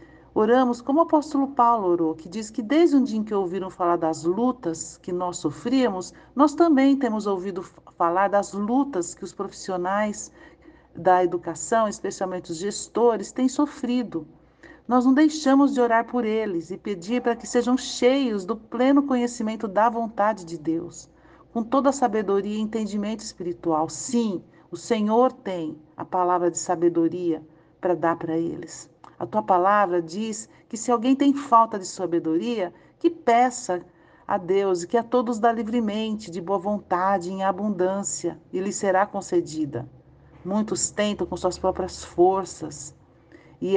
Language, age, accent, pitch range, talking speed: Portuguese, 50-69, Brazilian, 175-235 Hz, 155 wpm